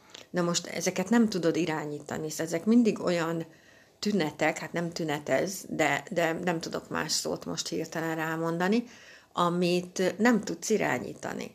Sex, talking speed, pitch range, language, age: female, 140 wpm, 155-180 Hz, Hungarian, 60-79